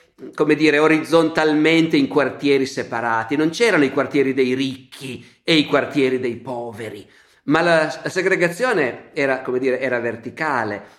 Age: 50-69